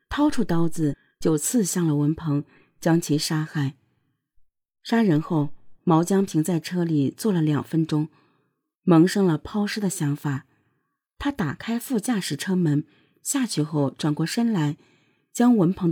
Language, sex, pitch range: Chinese, female, 150-210 Hz